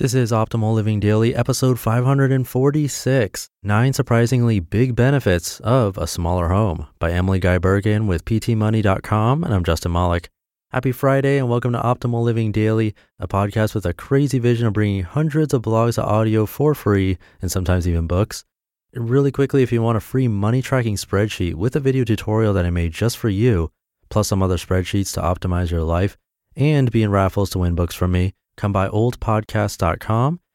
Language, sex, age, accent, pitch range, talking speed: English, male, 30-49, American, 90-120 Hz, 175 wpm